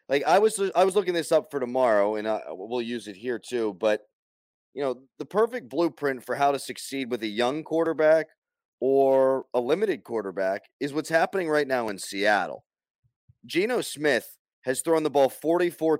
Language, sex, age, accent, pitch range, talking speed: English, male, 30-49, American, 115-160 Hz, 185 wpm